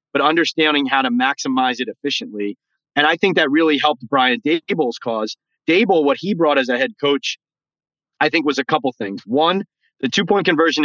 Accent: American